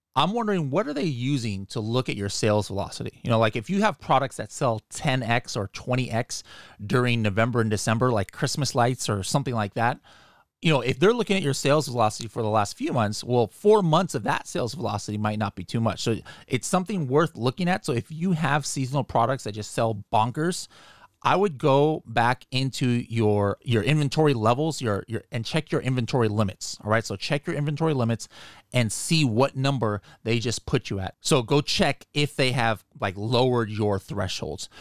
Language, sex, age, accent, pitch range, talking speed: English, male, 30-49, American, 110-145 Hz, 205 wpm